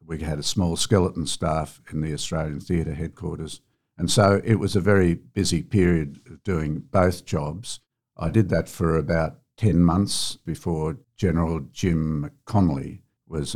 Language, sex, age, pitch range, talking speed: English, male, 70-89, 80-95 Hz, 155 wpm